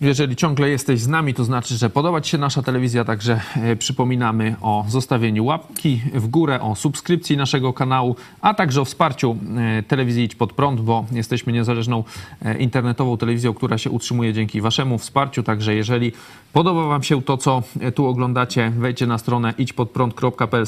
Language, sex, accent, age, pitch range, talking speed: Polish, male, native, 40-59, 120-145 Hz, 160 wpm